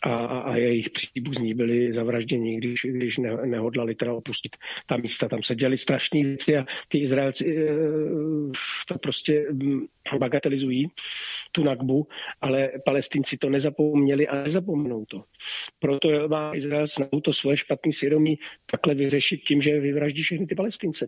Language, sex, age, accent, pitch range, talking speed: Czech, male, 50-69, native, 130-160 Hz, 140 wpm